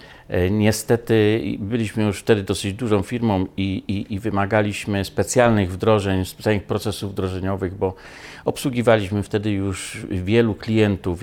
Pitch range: 95-115 Hz